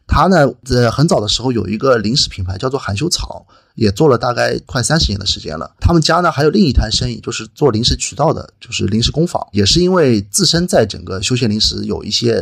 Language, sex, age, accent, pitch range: Chinese, male, 30-49, native, 105-150 Hz